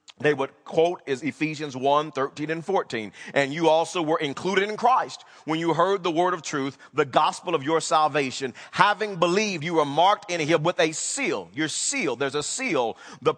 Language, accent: English, American